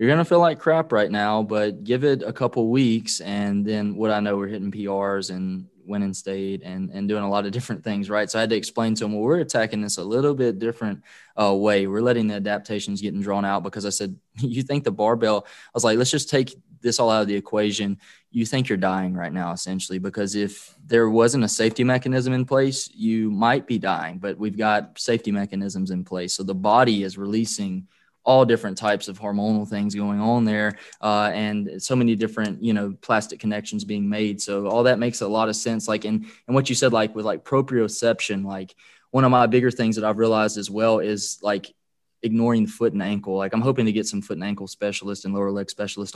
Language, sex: English, male